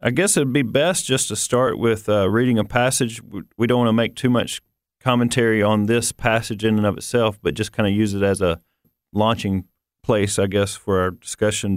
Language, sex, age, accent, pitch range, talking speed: English, male, 40-59, American, 100-120 Hz, 225 wpm